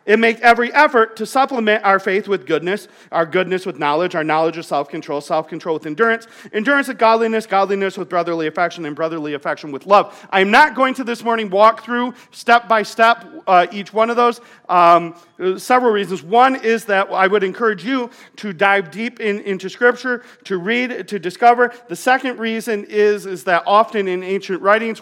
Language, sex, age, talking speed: English, male, 40-59, 180 wpm